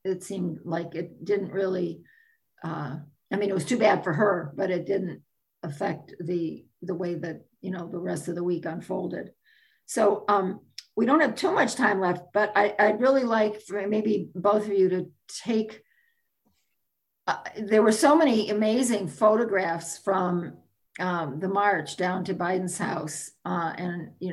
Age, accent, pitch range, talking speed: 50-69, American, 170-205 Hz, 175 wpm